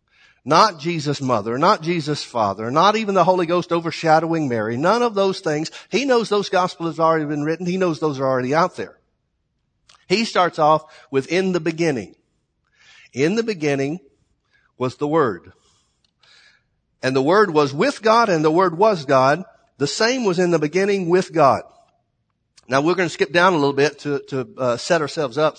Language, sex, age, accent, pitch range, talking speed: English, male, 50-69, American, 135-185 Hz, 185 wpm